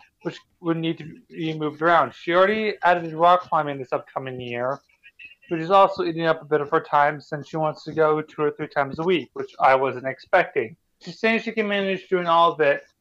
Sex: male